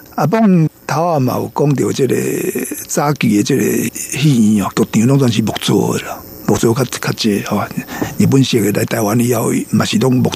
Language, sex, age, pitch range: Chinese, male, 50-69, 125-155 Hz